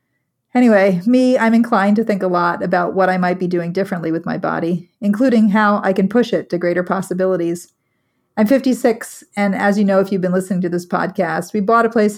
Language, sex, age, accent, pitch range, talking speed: English, female, 40-59, American, 175-215 Hz, 215 wpm